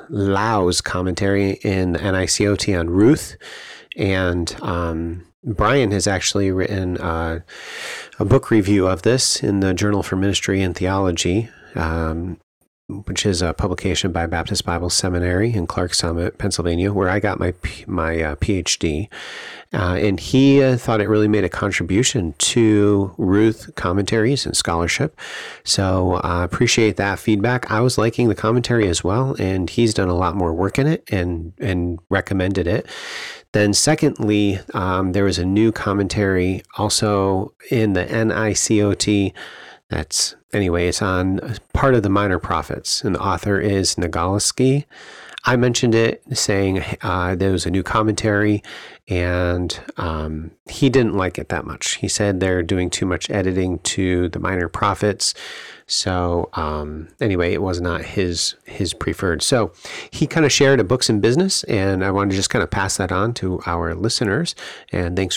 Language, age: English, 40-59